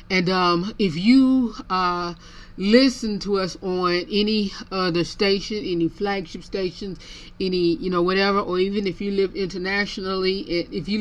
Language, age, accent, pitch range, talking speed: English, 30-49, American, 170-215 Hz, 145 wpm